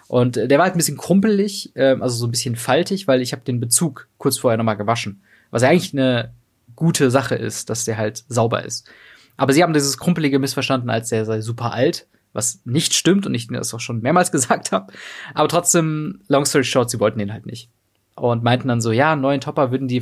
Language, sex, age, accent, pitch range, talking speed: German, male, 20-39, German, 115-145 Hz, 225 wpm